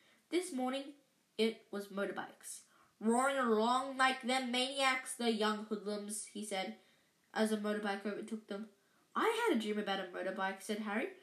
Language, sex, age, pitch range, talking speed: English, female, 10-29, 215-285 Hz, 155 wpm